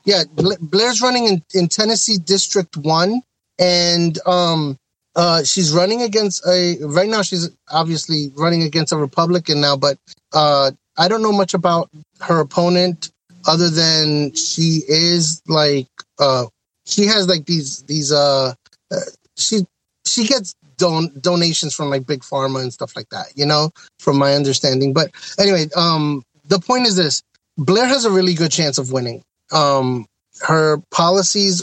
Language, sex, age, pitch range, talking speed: English, male, 30-49, 145-180 Hz, 155 wpm